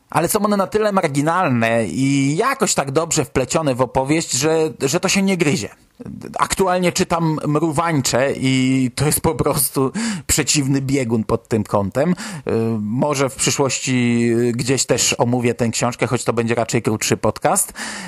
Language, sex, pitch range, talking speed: Polish, male, 125-170 Hz, 155 wpm